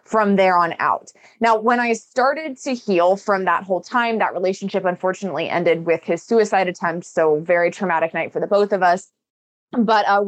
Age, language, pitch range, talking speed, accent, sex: 20-39, English, 175-220 Hz, 195 wpm, American, female